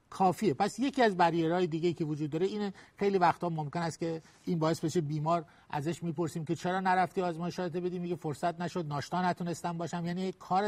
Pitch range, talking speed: 150-190 Hz, 195 wpm